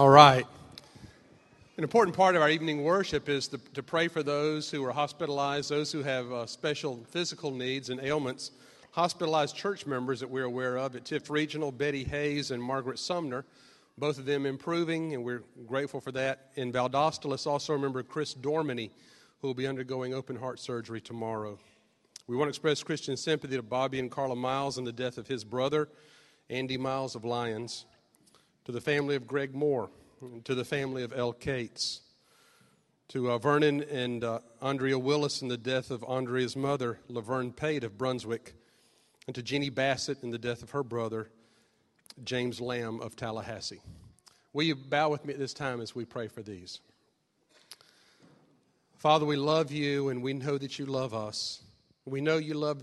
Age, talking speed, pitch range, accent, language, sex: 40-59, 175 wpm, 125-145 Hz, American, English, male